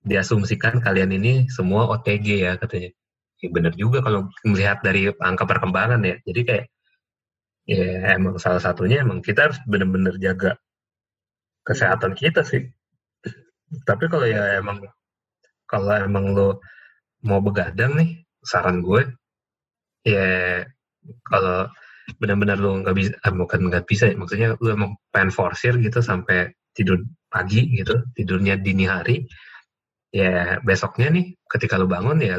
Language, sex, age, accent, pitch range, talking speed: Indonesian, male, 20-39, native, 95-120 Hz, 135 wpm